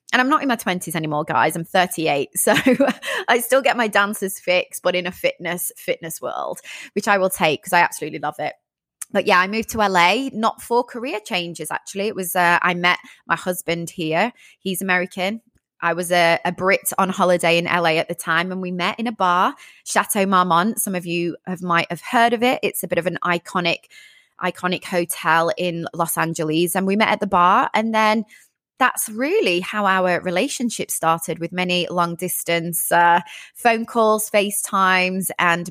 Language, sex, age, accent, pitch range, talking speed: English, female, 20-39, British, 170-210 Hz, 195 wpm